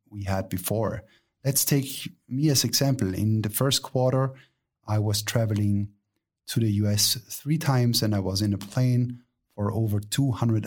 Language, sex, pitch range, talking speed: English, male, 105-125 Hz, 170 wpm